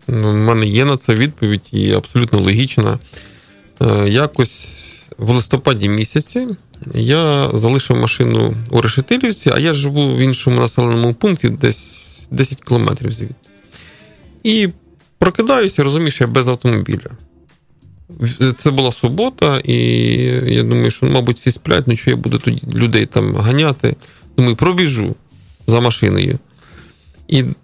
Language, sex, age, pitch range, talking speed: Ukrainian, male, 20-39, 115-145 Hz, 125 wpm